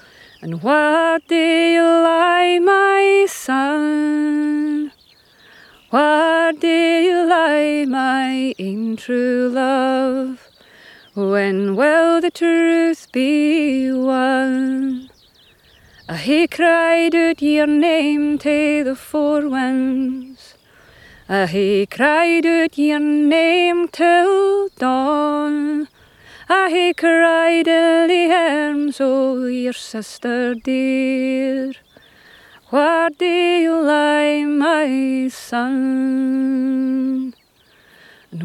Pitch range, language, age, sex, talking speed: 260-330 Hz, English, 30-49, female, 85 wpm